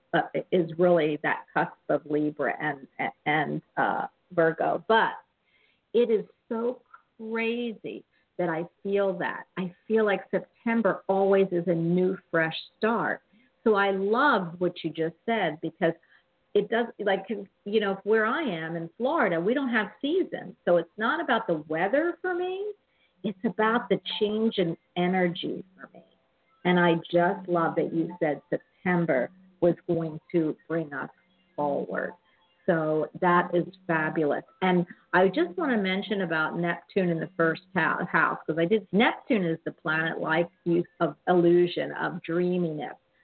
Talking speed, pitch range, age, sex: 155 wpm, 170-215 Hz, 50-69, female